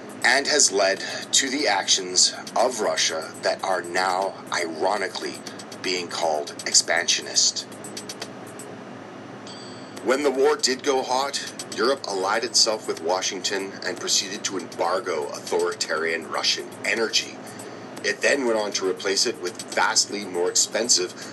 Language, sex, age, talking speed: English, male, 40-59, 125 wpm